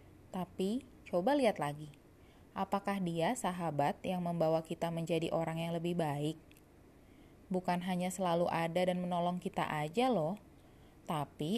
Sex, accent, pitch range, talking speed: female, native, 170-225 Hz, 130 wpm